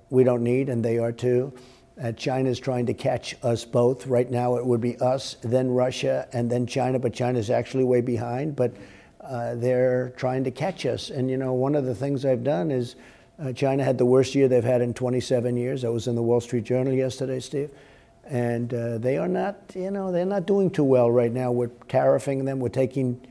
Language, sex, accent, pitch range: English, male, American, 120-135 Hz